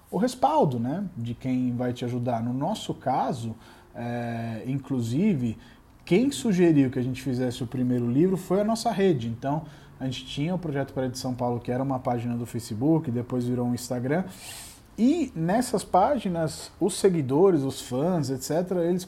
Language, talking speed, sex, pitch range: Portuguese, 175 wpm, male, 125-160 Hz